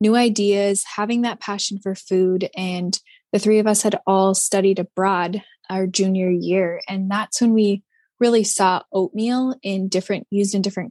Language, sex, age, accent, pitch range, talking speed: English, female, 20-39, American, 190-215 Hz, 170 wpm